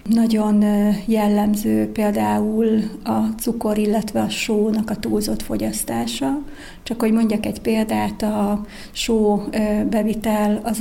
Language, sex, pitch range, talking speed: Hungarian, female, 210-230 Hz, 110 wpm